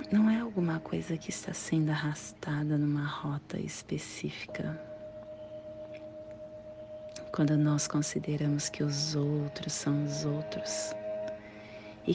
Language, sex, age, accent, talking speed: Portuguese, female, 40-59, Brazilian, 105 wpm